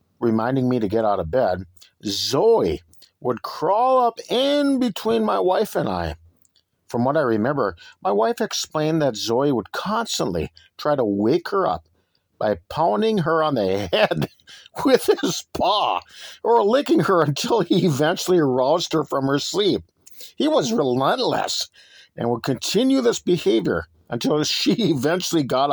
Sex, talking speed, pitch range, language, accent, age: male, 150 wpm, 115-185 Hz, English, American, 50-69